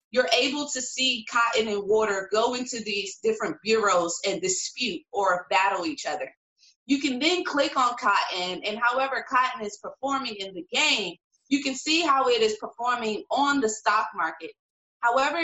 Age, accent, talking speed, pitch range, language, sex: 30-49, American, 170 wpm, 205-280 Hz, English, female